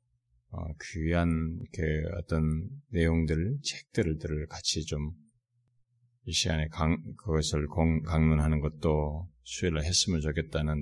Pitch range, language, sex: 75-110 Hz, Korean, male